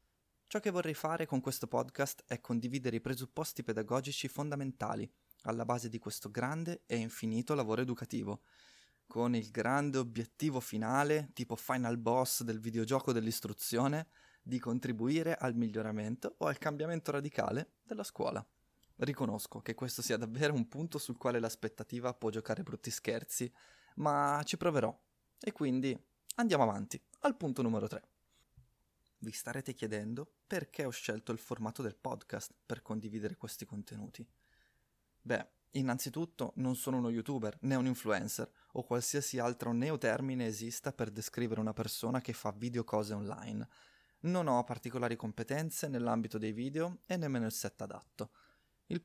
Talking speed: 145 wpm